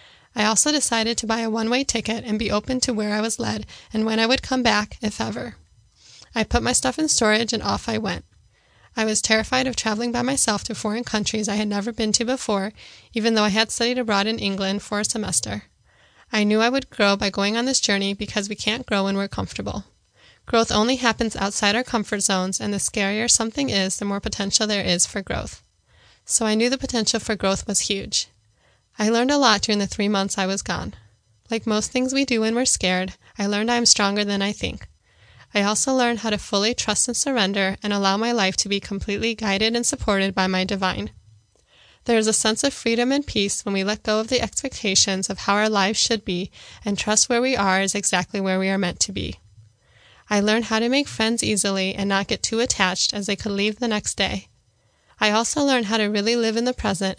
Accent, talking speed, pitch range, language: American, 230 wpm, 195-230 Hz, English